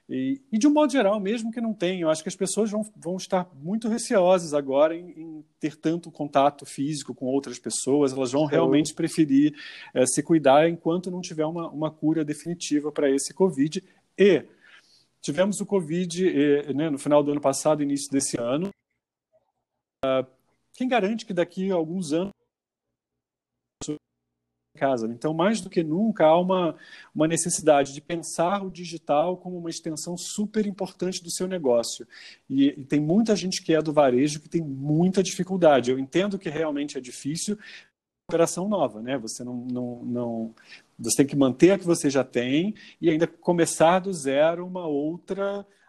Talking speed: 175 wpm